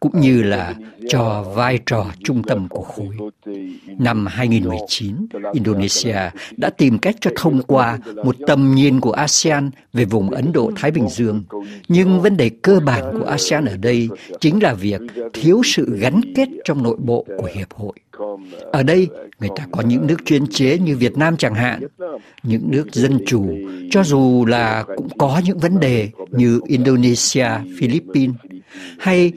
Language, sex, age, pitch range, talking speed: Vietnamese, male, 60-79, 110-145 Hz, 170 wpm